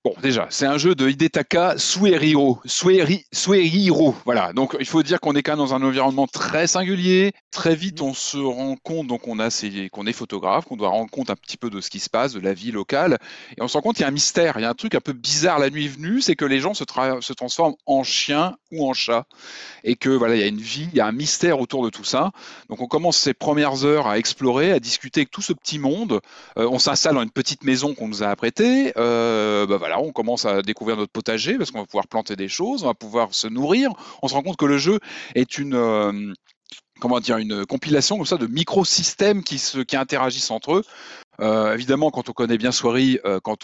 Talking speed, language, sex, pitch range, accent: 250 wpm, French, male, 115-150 Hz, French